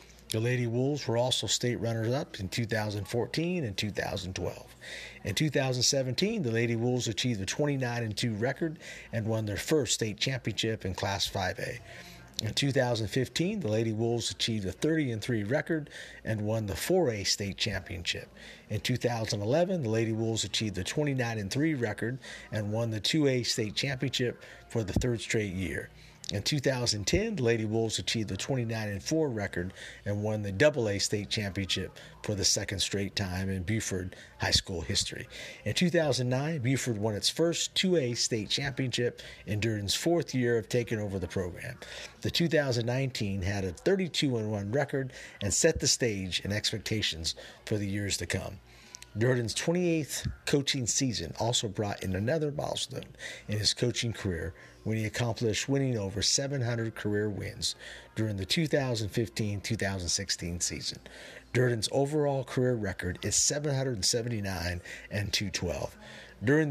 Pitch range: 100-130 Hz